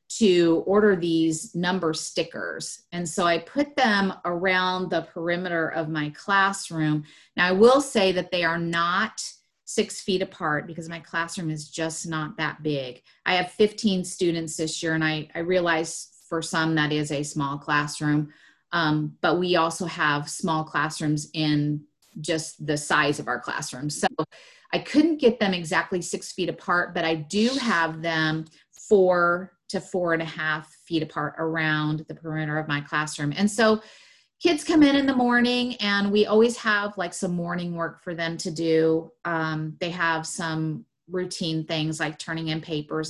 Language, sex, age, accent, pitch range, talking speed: English, female, 30-49, American, 155-185 Hz, 175 wpm